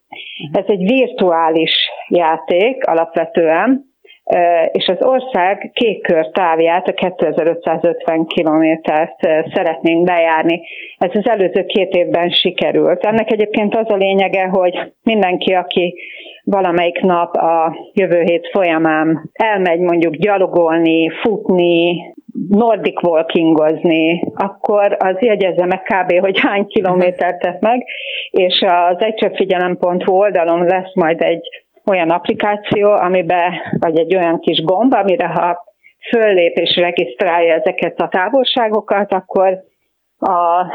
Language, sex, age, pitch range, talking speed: Hungarian, female, 40-59, 170-210 Hz, 115 wpm